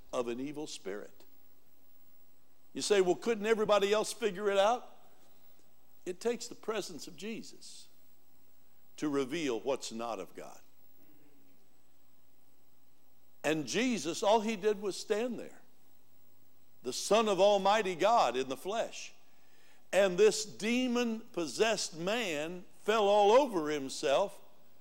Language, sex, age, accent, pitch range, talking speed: English, male, 60-79, American, 155-235 Hz, 120 wpm